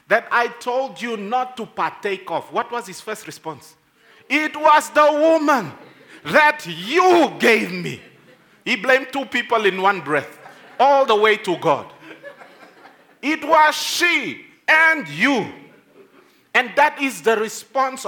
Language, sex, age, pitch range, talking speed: English, male, 50-69, 170-260 Hz, 145 wpm